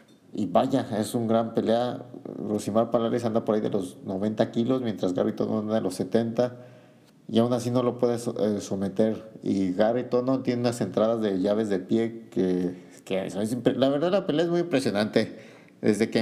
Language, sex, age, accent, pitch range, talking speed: Spanish, male, 50-69, Mexican, 110-135 Hz, 190 wpm